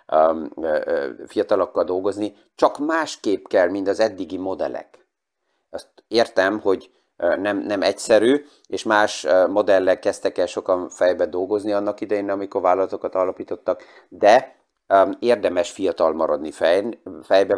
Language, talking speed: Hungarian, 115 wpm